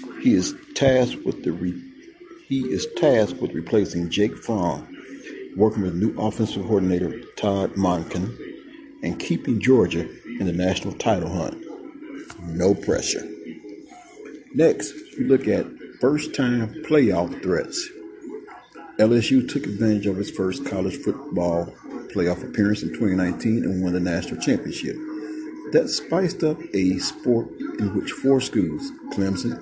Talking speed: 130 wpm